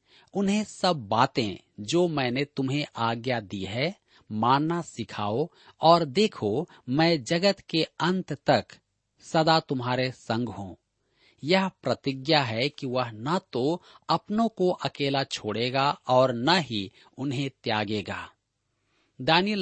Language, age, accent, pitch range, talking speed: Hindi, 40-59, native, 120-170 Hz, 120 wpm